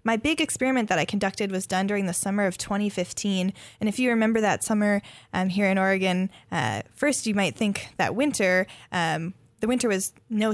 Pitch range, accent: 180-215 Hz, American